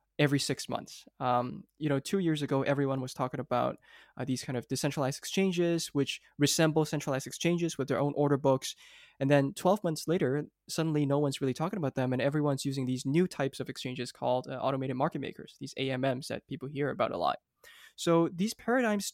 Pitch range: 135-160 Hz